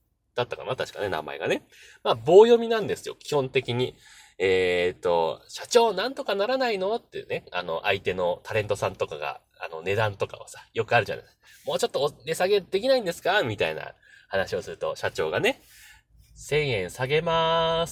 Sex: male